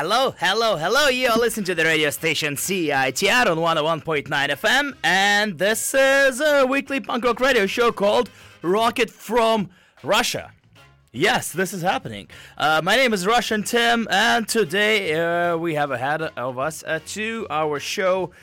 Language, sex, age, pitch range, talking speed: English, male, 20-39, 125-195 Hz, 165 wpm